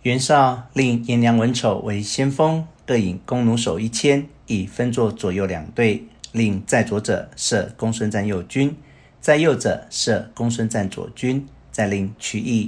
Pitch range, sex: 100-125 Hz, male